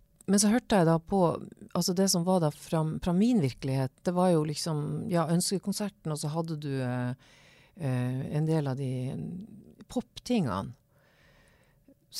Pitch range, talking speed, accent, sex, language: 140-195 Hz, 150 wpm, Swedish, female, English